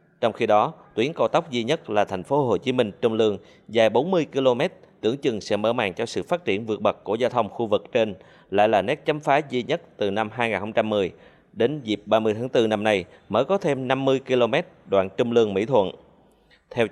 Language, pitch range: Vietnamese, 115-145 Hz